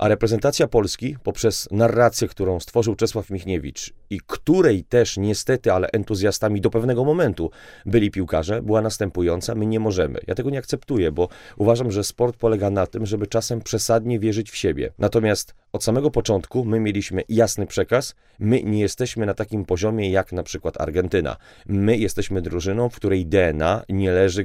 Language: Polish